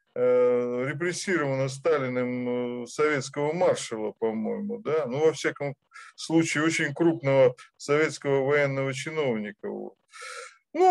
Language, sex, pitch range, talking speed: Russian, male, 155-230 Hz, 95 wpm